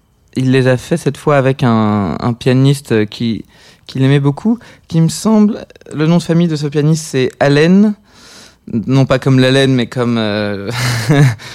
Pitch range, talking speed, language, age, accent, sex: 110-135 Hz, 170 wpm, French, 20-39, French, male